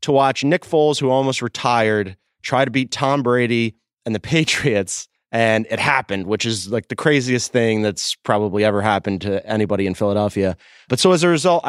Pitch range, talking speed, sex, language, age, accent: 105-145 Hz, 190 wpm, male, English, 30-49, American